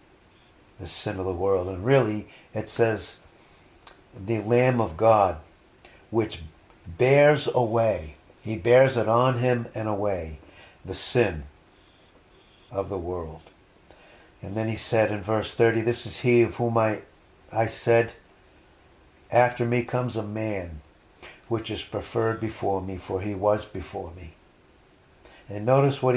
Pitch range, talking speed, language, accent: 95-120 Hz, 140 wpm, English, American